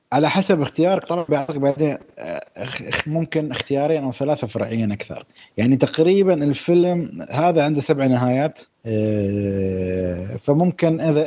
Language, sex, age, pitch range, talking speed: Arabic, male, 20-39, 120-160 Hz, 110 wpm